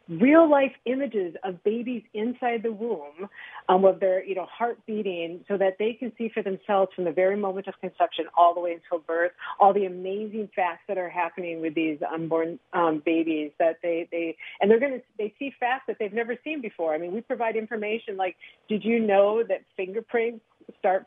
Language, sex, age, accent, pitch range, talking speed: English, female, 40-59, American, 170-215 Hz, 200 wpm